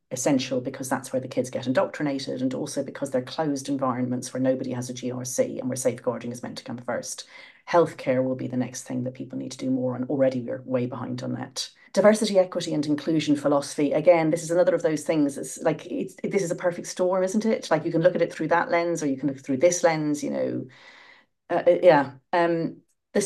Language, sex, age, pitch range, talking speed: English, female, 40-59, 135-205 Hz, 230 wpm